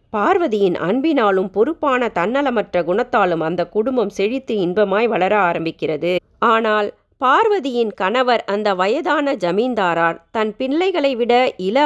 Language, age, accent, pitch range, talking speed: Tamil, 30-49, native, 185-260 Hz, 105 wpm